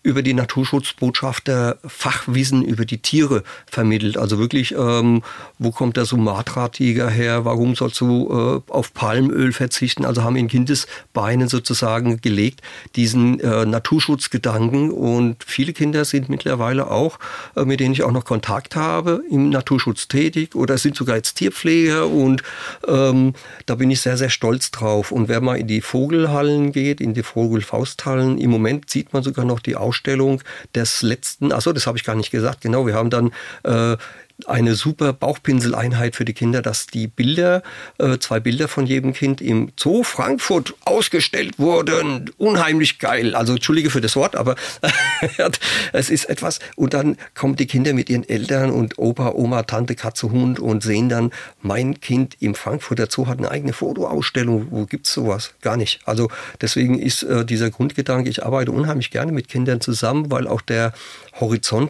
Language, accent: German, German